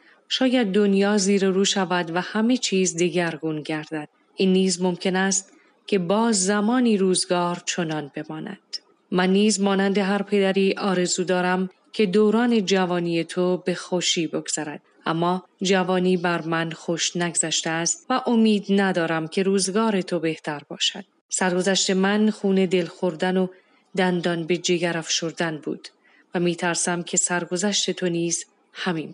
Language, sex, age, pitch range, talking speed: Persian, female, 30-49, 170-200 Hz, 140 wpm